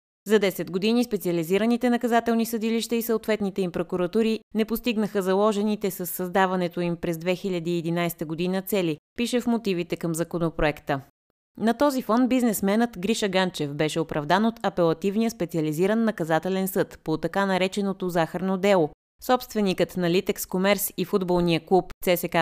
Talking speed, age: 135 wpm, 20-39